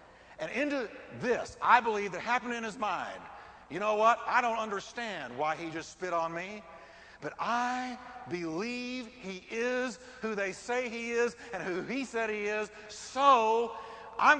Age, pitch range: 50-69, 195-245 Hz